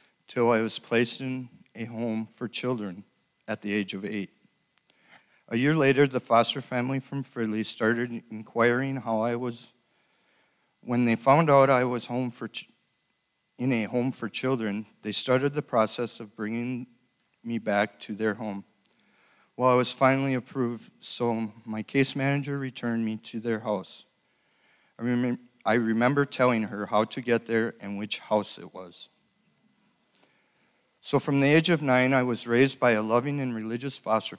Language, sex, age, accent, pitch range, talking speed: English, male, 50-69, American, 110-125 Hz, 170 wpm